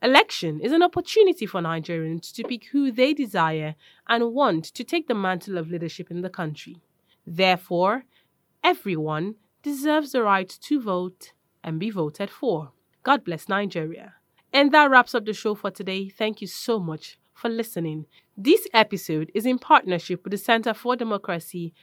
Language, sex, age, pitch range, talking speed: English, female, 20-39, 170-225 Hz, 165 wpm